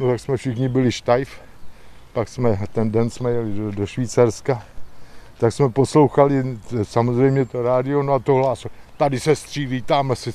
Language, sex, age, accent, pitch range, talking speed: Czech, male, 50-69, native, 110-140 Hz, 170 wpm